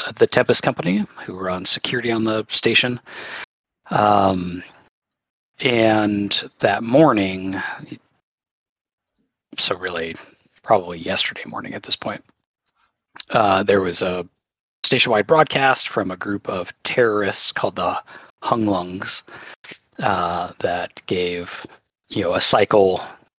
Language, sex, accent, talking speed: English, male, American, 105 wpm